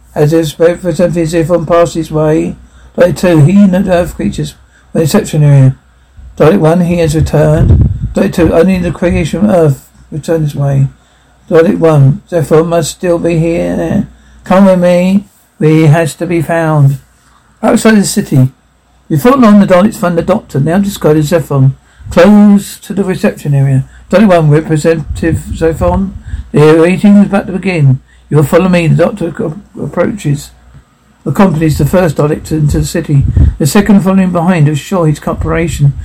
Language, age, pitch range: English, 60-79, 145-185 Hz